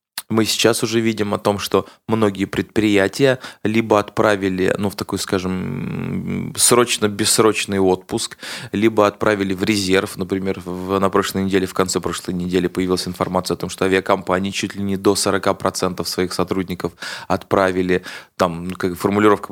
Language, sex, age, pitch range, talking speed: Russian, male, 20-39, 95-110 Hz, 145 wpm